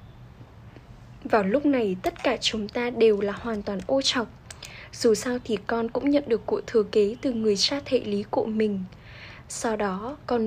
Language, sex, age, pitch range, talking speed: Vietnamese, female, 10-29, 220-270 Hz, 190 wpm